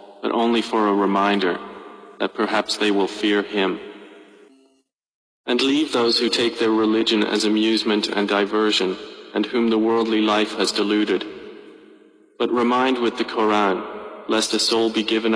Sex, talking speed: male, 150 wpm